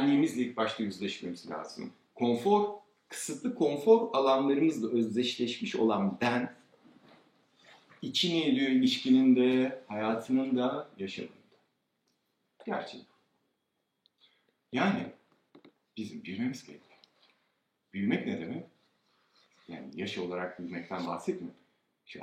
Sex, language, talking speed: male, Turkish, 90 wpm